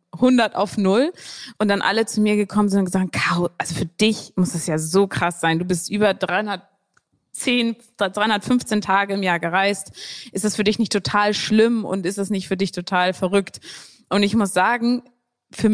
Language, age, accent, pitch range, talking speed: German, 20-39, German, 185-215 Hz, 190 wpm